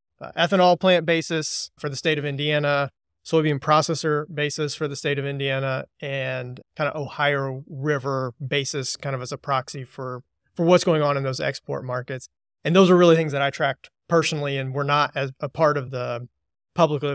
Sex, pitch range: male, 135-160 Hz